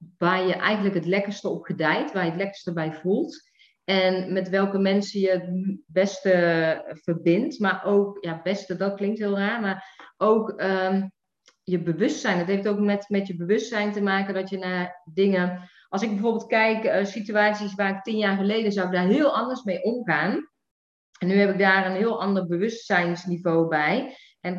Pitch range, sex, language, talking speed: 185-210 Hz, female, Dutch, 190 wpm